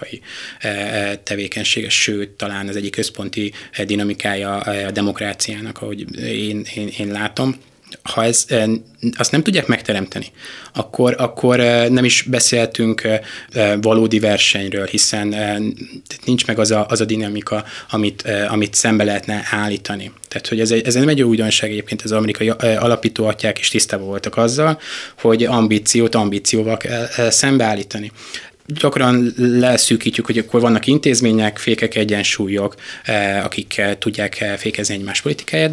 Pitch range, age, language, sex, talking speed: 105-120 Hz, 20-39, Hungarian, male, 120 wpm